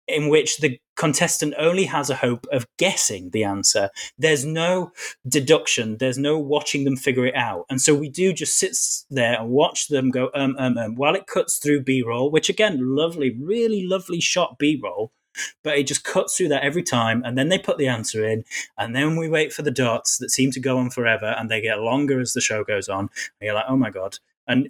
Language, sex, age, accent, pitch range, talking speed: English, male, 20-39, British, 125-155 Hz, 225 wpm